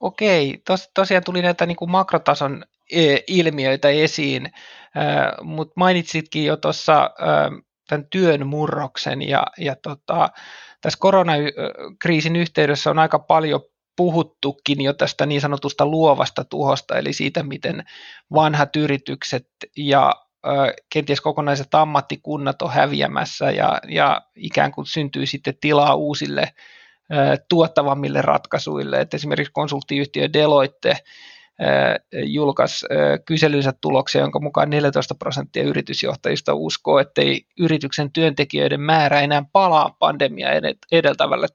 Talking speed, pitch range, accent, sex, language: 105 wpm, 140-160 Hz, native, male, Finnish